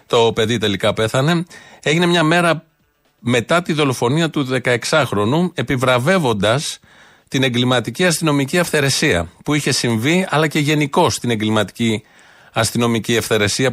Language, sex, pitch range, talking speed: Greek, male, 110-150 Hz, 120 wpm